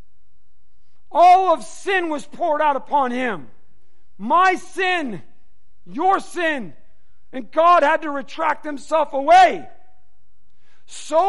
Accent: American